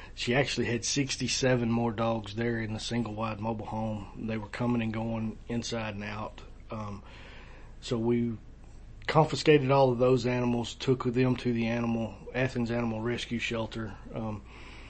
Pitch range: 110-125 Hz